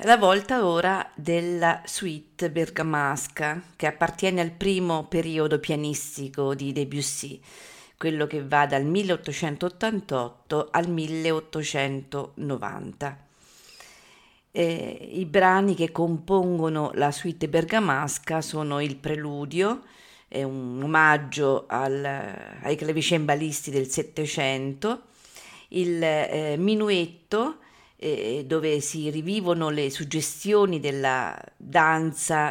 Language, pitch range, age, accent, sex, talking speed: Italian, 145-175 Hz, 40-59, native, female, 90 wpm